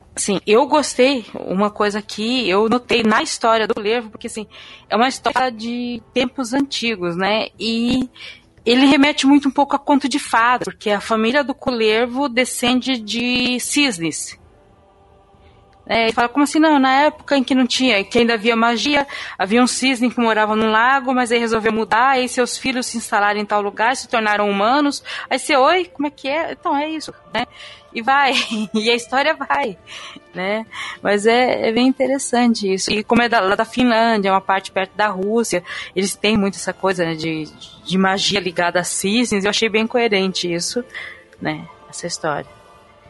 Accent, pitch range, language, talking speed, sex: Brazilian, 210-265 Hz, Portuguese, 190 wpm, female